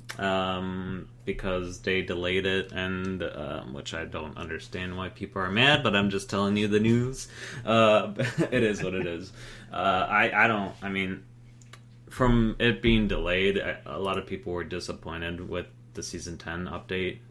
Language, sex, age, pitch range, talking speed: English, male, 30-49, 90-120 Hz, 170 wpm